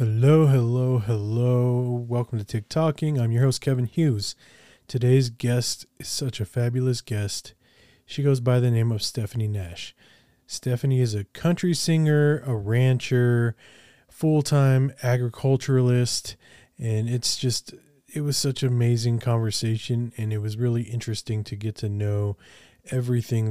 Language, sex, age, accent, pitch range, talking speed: English, male, 20-39, American, 105-125 Hz, 140 wpm